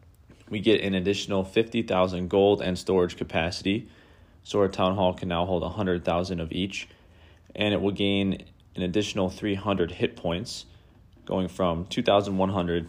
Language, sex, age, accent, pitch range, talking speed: English, male, 30-49, American, 85-105 Hz, 145 wpm